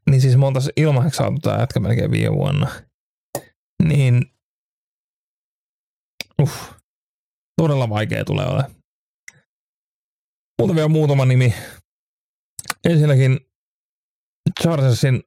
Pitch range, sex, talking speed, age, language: 120-145 Hz, male, 85 wpm, 30-49, Finnish